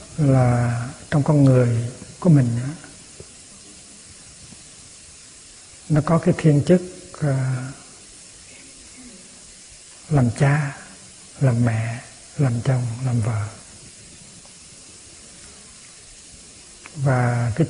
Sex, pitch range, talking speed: male, 125-150 Hz, 75 wpm